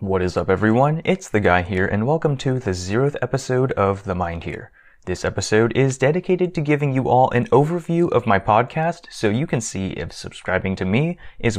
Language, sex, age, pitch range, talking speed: English, male, 30-49, 105-145 Hz, 205 wpm